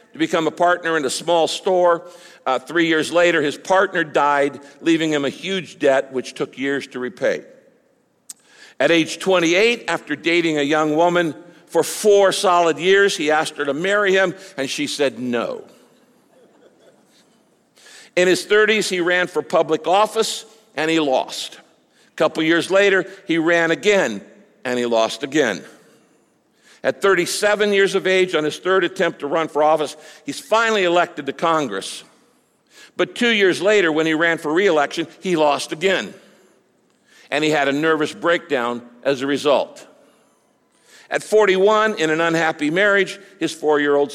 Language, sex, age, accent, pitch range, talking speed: English, male, 60-79, American, 150-190 Hz, 160 wpm